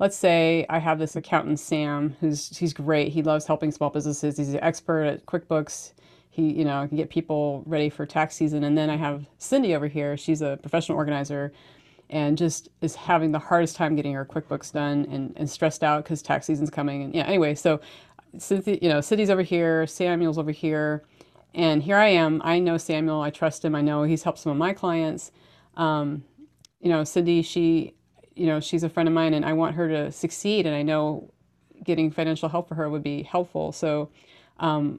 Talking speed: 210 wpm